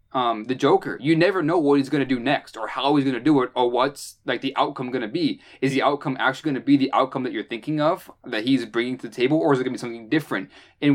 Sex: male